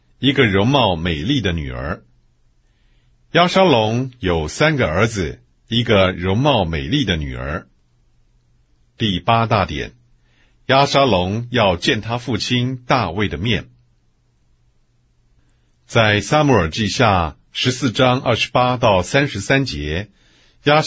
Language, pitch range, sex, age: English, 85-125 Hz, male, 50-69